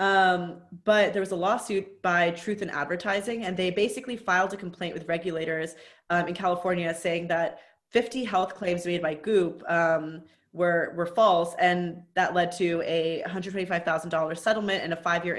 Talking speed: 170 wpm